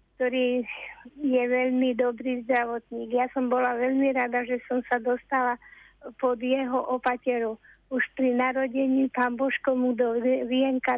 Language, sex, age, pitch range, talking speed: Slovak, female, 50-69, 240-265 Hz, 130 wpm